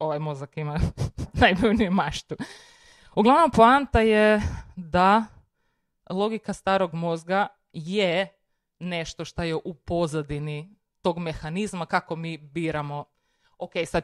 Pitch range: 155-200 Hz